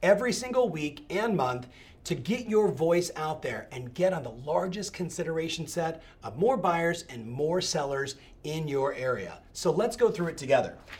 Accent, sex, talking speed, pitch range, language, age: American, male, 180 wpm, 150-215 Hz, English, 40-59